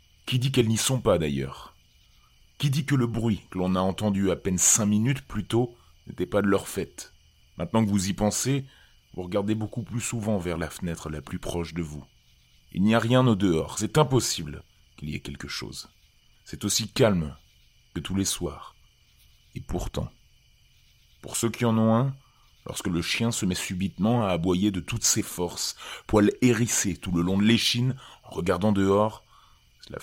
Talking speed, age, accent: 190 wpm, 30-49, French